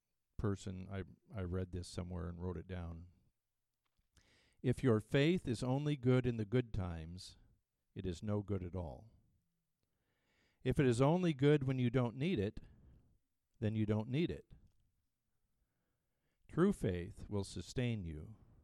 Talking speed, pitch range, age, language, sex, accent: 150 wpm, 95-125 Hz, 50-69, English, male, American